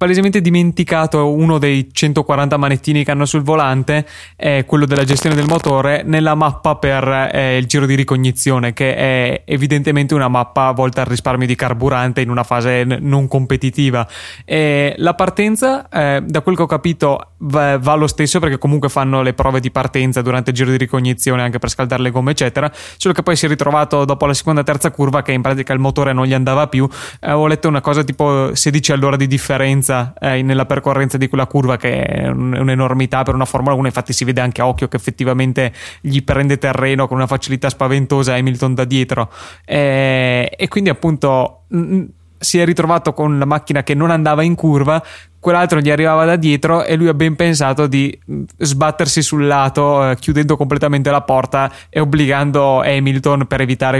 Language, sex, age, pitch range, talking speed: Italian, male, 20-39, 130-150 Hz, 190 wpm